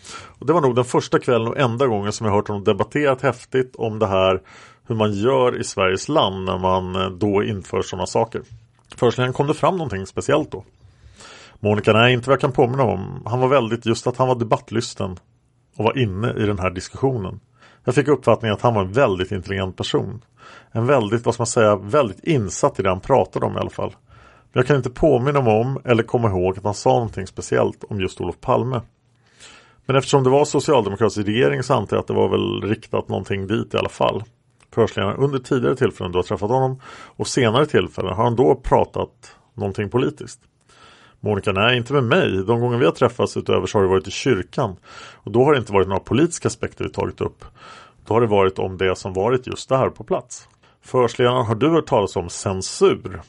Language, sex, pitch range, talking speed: Swedish, male, 100-130 Hz, 215 wpm